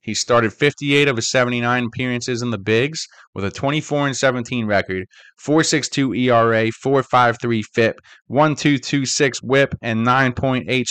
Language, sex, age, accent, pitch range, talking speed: English, male, 20-39, American, 120-140 Hz, 130 wpm